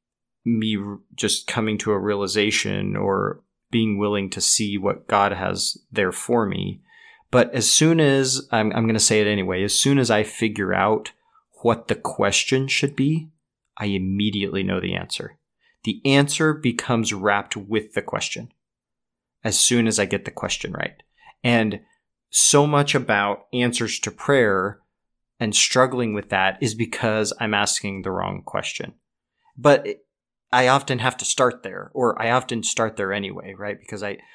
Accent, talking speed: American, 160 wpm